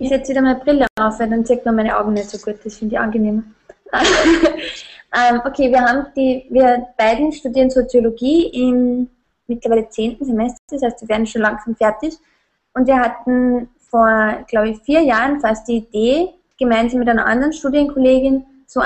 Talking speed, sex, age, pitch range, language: 180 wpm, female, 20-39, 225-260 Hz, German